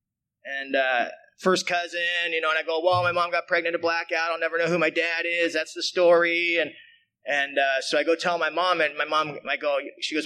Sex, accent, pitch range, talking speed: male, American, 140-185 Hz, 245 wpm